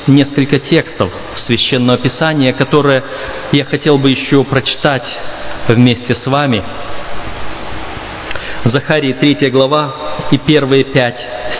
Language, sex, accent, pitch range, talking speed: Russian, male, native, 130-180 Hz, 100 wpm